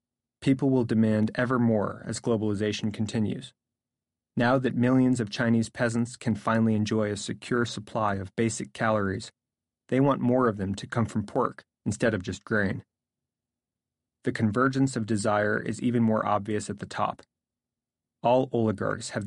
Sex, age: male, 30-49